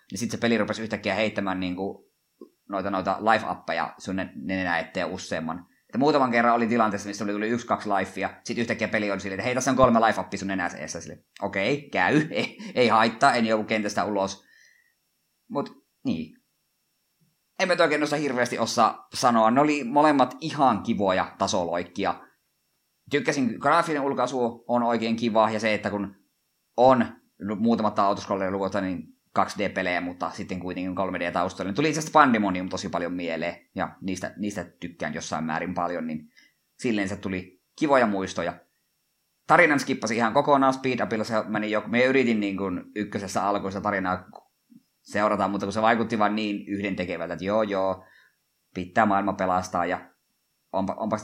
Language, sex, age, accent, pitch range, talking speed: Finnish, male, 20-39, native, 95-115 Hz, 160 wpm